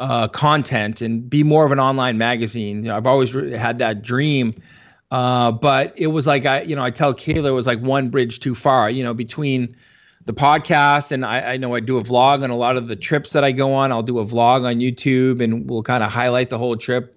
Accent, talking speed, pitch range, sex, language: American, 250 wpm, 120-140 Hz, male, English